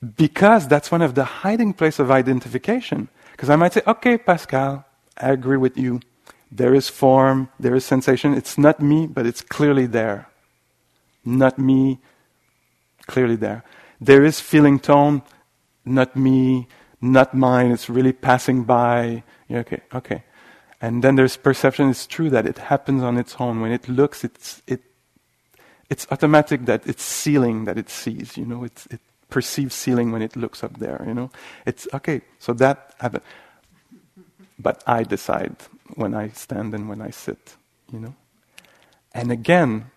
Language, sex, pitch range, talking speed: English, male, 120-145 Hz, 160 wpm